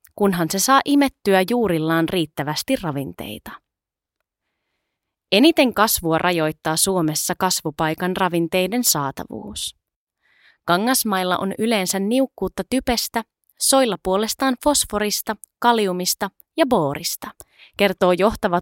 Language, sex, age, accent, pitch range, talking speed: Finnish, female, 20-39, native, 170-230 Hz, 85 wpm